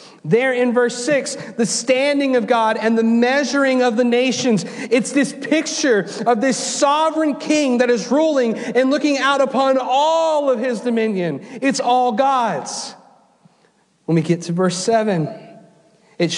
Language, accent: English, American